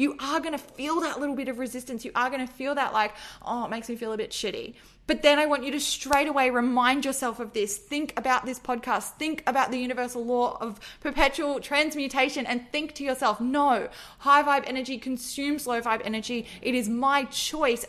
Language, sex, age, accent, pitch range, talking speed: English, female, 20-39, Australian, 225-270 Hz, 220 wpm